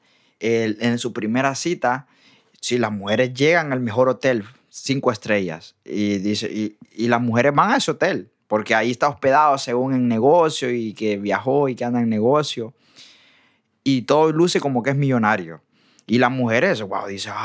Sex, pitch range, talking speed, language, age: male, 110-130 Hz, 180 wpm, Spanish, 20-39